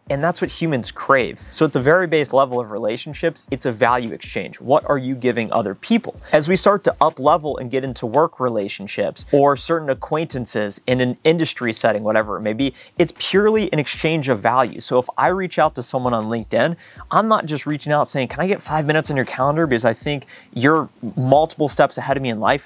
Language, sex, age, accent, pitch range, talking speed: English, male, 30-49, American, 125-155 Hz, 225 wpm